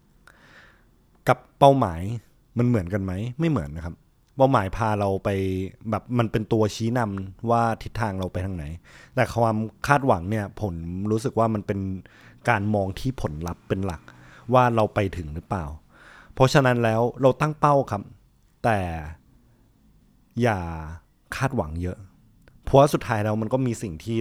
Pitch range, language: 95-120 Hz, Thai